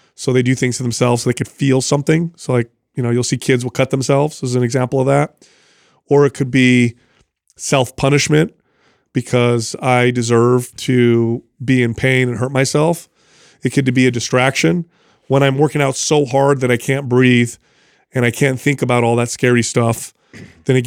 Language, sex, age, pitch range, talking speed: English, male, 30-49, 120-140 Hz, 195 wpm